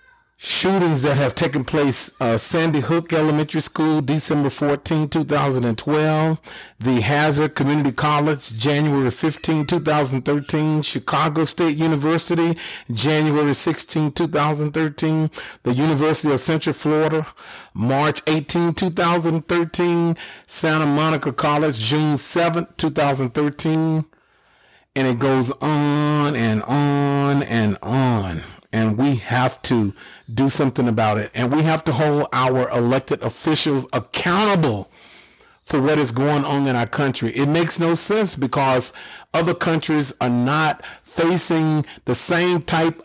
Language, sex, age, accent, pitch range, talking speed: English, male, 40-59, American, 130-160 Hz, 120 wpm